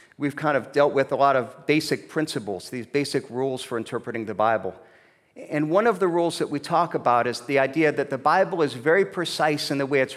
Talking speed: 230 wpm